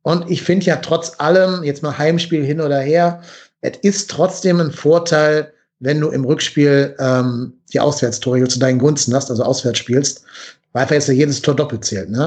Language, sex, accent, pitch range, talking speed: German, male, German, 130-160 Hz, 190 wpm